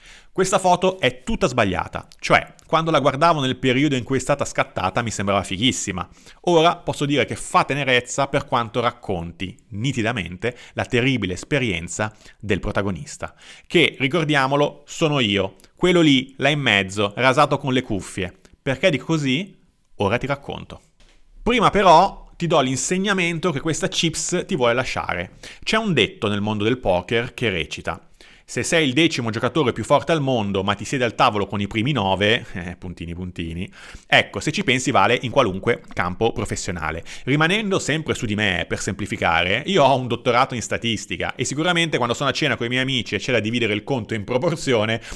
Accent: native